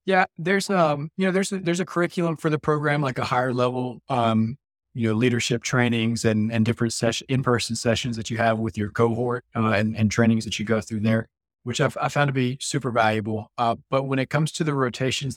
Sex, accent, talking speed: male, American, 235 wpm